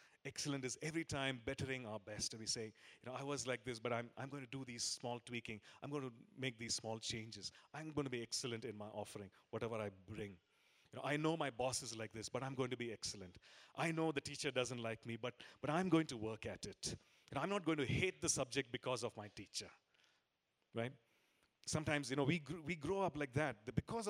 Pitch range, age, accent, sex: 115-150 Hz, 40-59, Indian, male